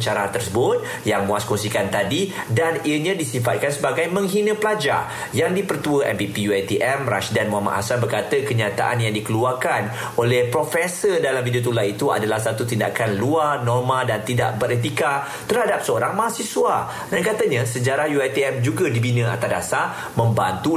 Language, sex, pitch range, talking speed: Malay, male, 115-140 Hz, 140 wpm